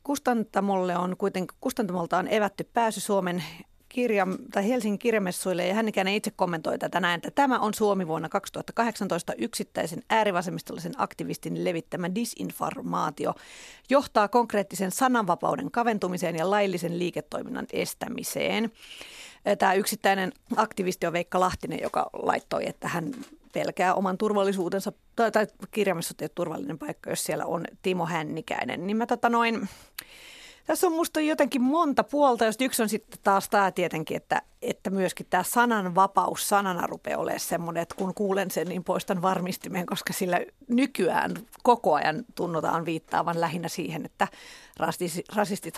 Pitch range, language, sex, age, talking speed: 175-225 Hz, Finnish, female, 40-59, 135 wpm